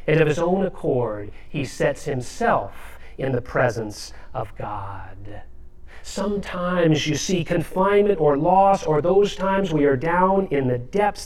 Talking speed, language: 150 wpm, English